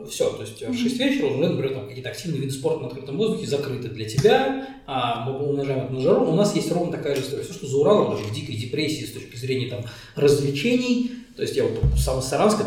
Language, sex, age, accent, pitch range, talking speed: Russian, male, 20-39, native, 130-185 Hz, 240 wpm